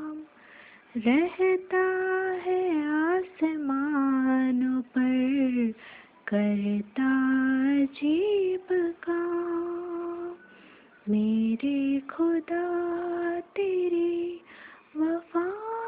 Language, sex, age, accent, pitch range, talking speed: Hindi, female, 20-39, native, 265-350 Hz, 40 wpm